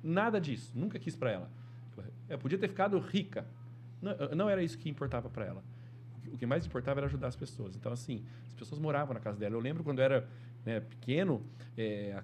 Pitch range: 120-160 Hz